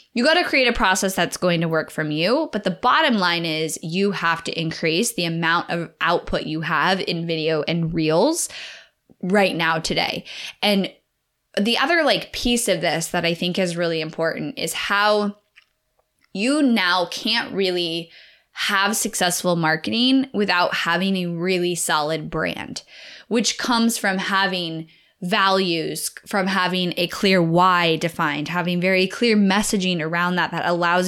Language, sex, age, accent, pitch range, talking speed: English, female, 10-29, American, 165-205 Hz, 155 wpm